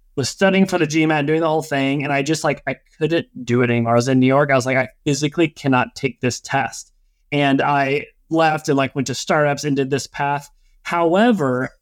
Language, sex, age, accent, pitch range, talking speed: English, male, 30-49, American, 130-165 Hz, 230 wpm